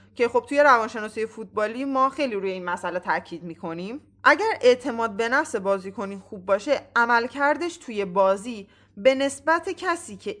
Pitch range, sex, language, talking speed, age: 210-280 Hz, female, Persian, 160 wpm, 20-39